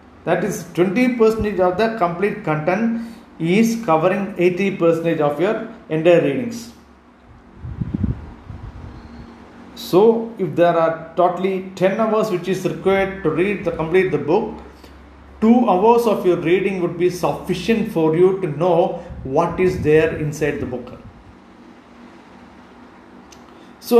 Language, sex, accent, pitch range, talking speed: English, male, Indian, 160-210 Hz, 125 wpm